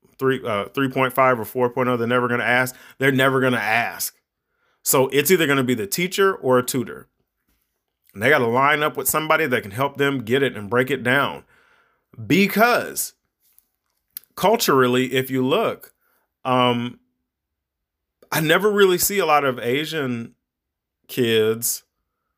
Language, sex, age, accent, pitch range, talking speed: English, male, 30-49, American, 120-145 Hz, 160 wpm